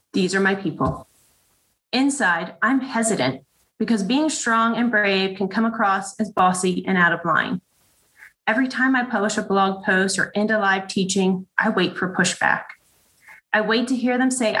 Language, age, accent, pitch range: English, 30-49, American, 185-225 Hz